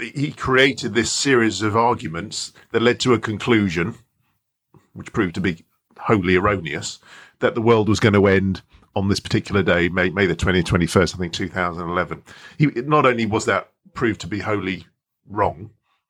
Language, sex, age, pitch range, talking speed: English, male, 40-59, 105-155 Hz, 170 wpm